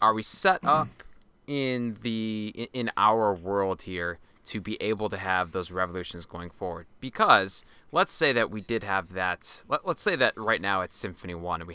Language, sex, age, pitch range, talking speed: English, male, 20-39, 90-110 Hz, 195 wpm